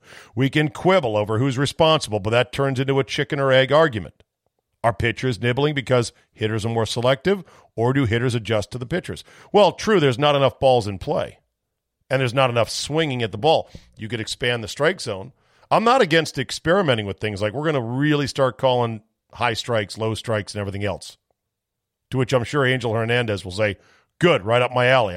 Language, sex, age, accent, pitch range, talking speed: English, male, 50-69, American, 110-140 Hz, 205 wpm